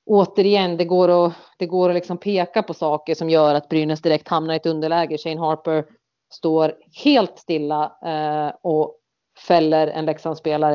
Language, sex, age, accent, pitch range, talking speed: Swedish, female, 30-49, native, 155-175 Hz, 165 wpm